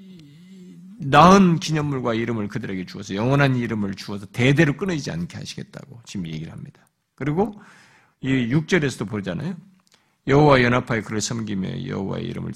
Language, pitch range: Korean, 125-180 Hz